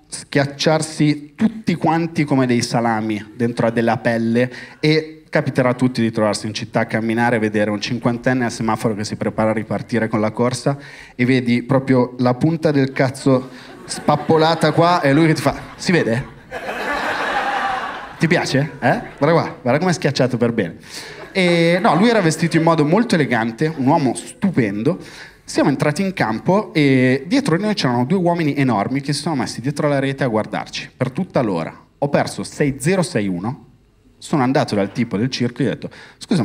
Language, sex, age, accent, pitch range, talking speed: Italian, male, 30-49, native, 110-155 Hz, 180 wpm